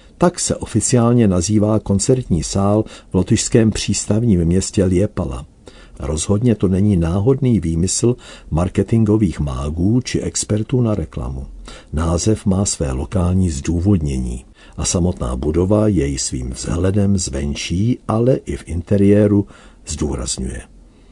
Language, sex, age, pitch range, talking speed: Czech, male, 60-79, 80-105 Hz, 110 wpm